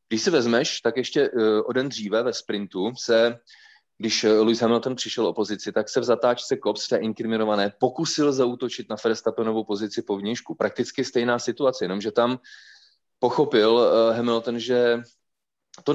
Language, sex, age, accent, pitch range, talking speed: Czech, male, 30-49, native, 100-125 Hz, 160 wpm